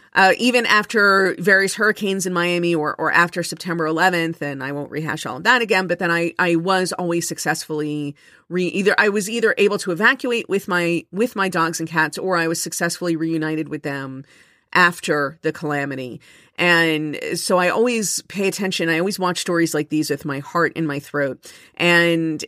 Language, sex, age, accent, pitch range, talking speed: English, female, 40-59, American, 160-200 Hz, 190 wpm